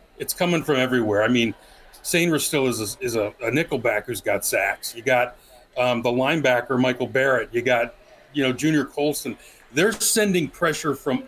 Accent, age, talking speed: American, 40-59, 170 wpm